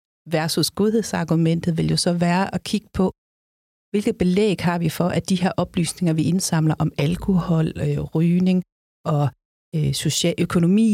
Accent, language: native, Danish